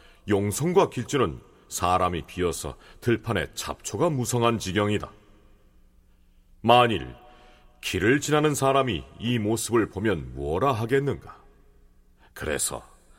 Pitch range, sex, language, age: 85-120 Hz, male, Korean, 40-59